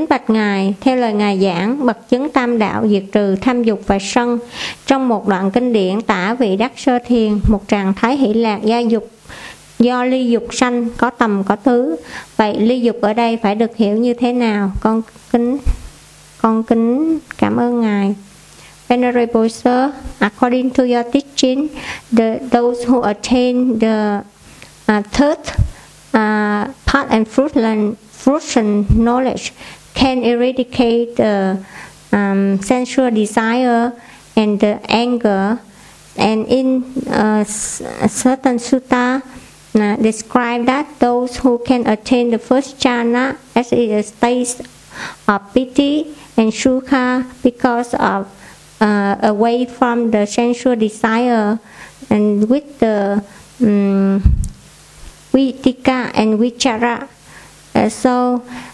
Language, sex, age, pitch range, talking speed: Vietnamese, male, 50-69, 215-255 Hz, 140 wpm